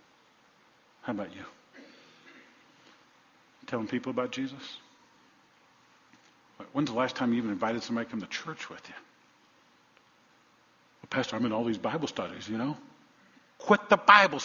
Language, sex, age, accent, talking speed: English, male, 50-69, American, 140 wpm